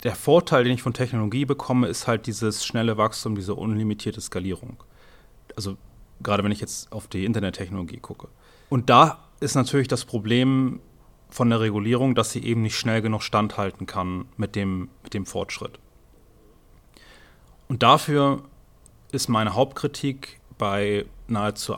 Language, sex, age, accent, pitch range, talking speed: German, male, 30-49, German, 105-120 Hz, 145 wpm